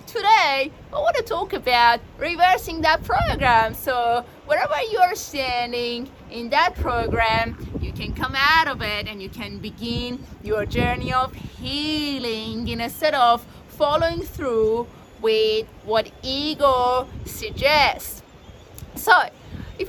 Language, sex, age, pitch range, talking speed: English, female, 30-49, 240-325 Hz, 125 wpm